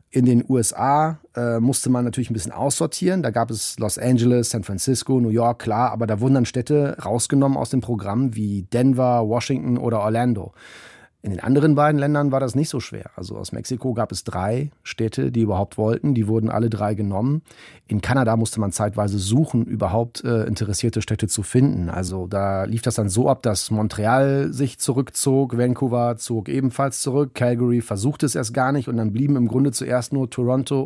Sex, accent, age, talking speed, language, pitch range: male, German, 30-49, 195 wpm, German, 110-130 Hz